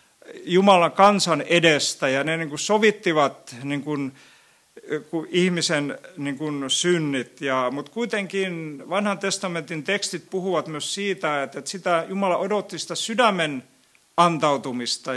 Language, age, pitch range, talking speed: Finnish, 50-69, 145-180 Hz, 120 wpm